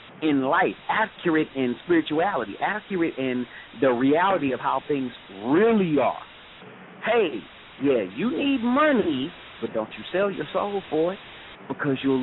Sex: male